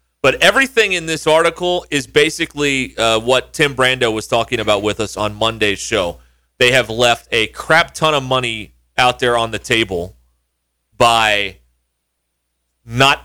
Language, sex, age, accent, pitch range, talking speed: English, male, 30-49, American, 100-140 Hz, 155 wpm